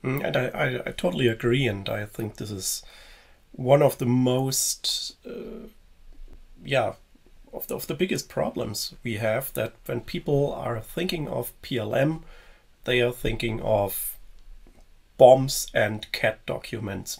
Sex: male